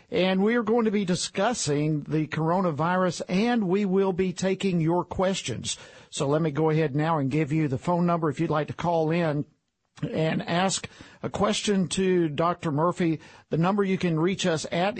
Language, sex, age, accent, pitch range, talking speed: English, male, 50-69, American, 150-185 Hz, 190 wpm